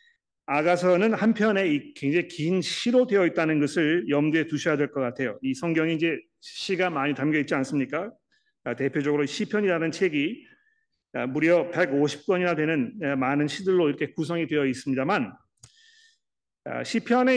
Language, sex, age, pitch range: Korean, male, 40-59, 150-190 Hz